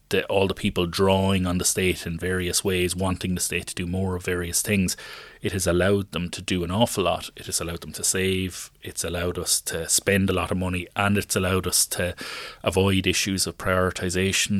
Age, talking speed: 30-49, 215 wpm